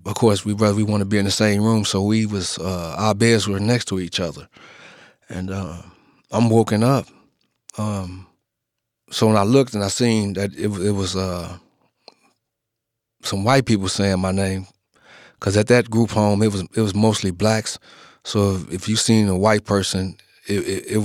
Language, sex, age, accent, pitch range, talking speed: English, male, 30-49, American, 100-115 Hz, 190 wpm